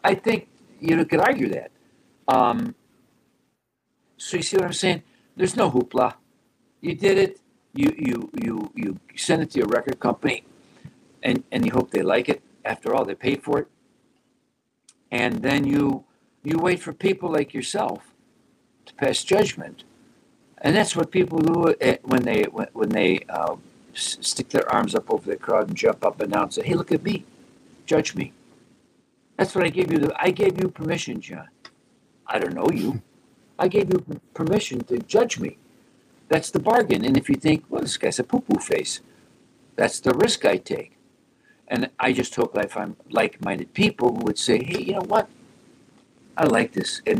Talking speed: 180 wpm